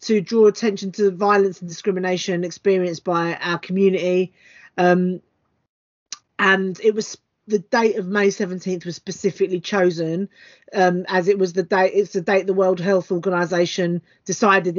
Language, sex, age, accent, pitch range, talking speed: English, female, 30-49, British, 180-220 Hz, 155 wpm